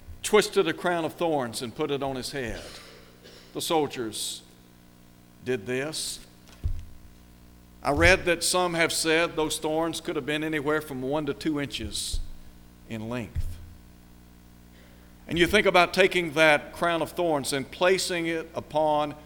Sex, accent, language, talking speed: male, American, English, 145 wpm